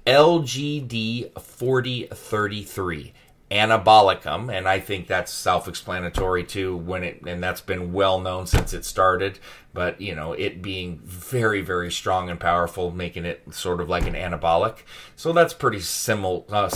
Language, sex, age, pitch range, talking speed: English, male, 30-49, 90-115 Hz, 145 wpm